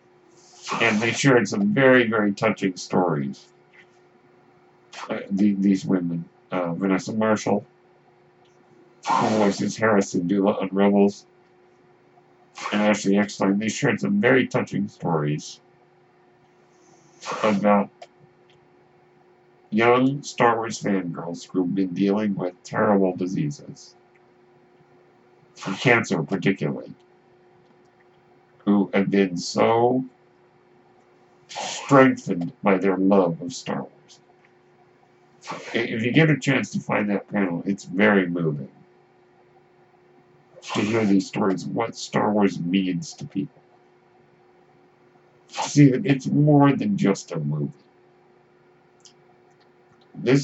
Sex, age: male, 60-79